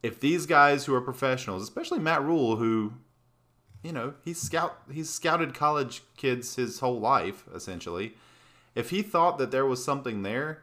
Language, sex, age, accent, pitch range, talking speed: English, male, 30-49, American, 95-135 Hz, 170 wpm